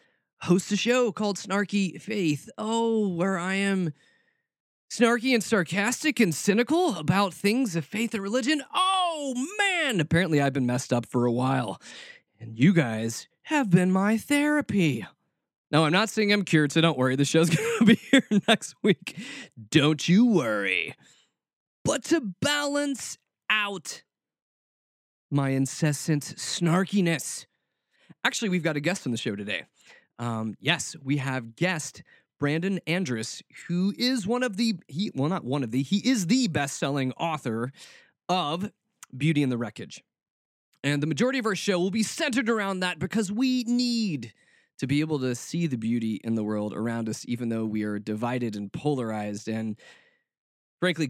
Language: English